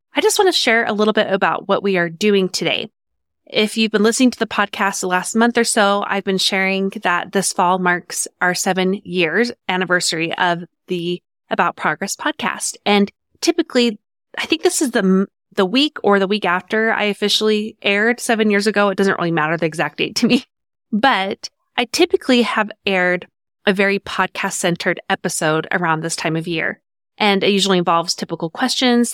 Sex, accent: female, American